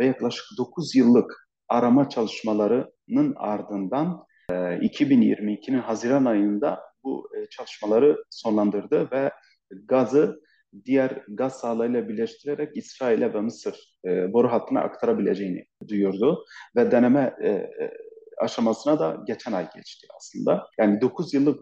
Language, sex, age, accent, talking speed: Turkish, male, 40-59, native, 105 wpm